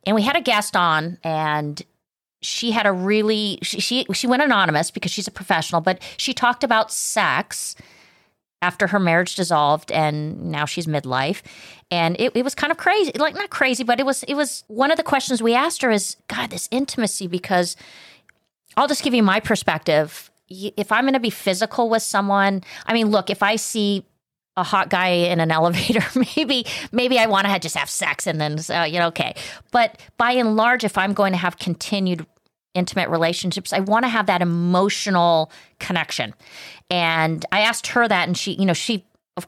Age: 30-49